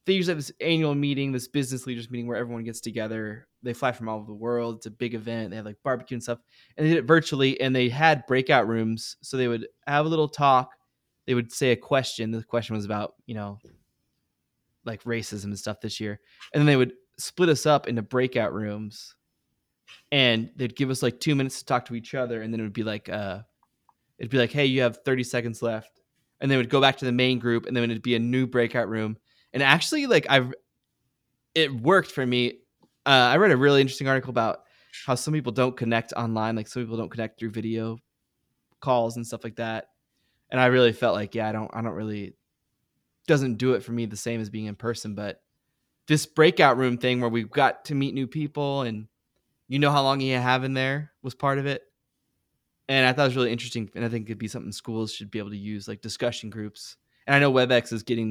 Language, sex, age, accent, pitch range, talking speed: English, male, 20-39, American, 115-135 Hz, 235 wpm